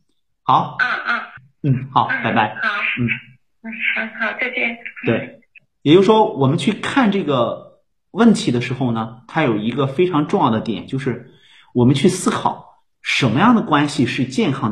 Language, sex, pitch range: Chinese, male, 120-165 Hz